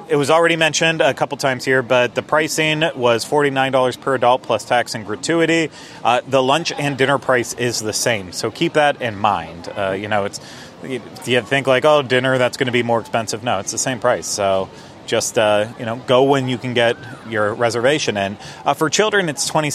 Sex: male